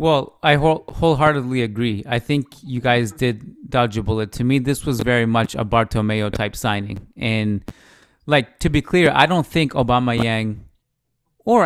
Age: 30-49